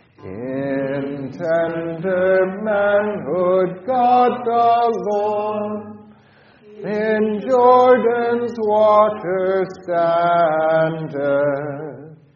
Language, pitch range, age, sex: English, 165-235 Hz, 40-59, male